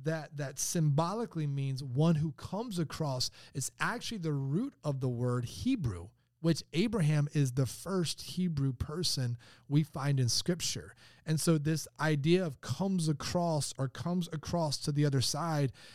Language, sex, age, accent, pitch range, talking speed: English, male, 30-49, American, 125-155 Hz, 155 wpm